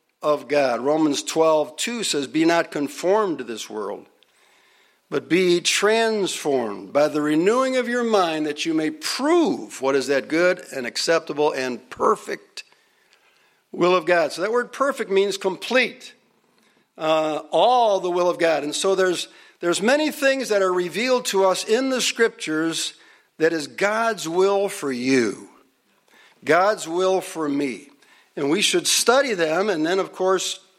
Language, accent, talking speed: English, American, 155 wpm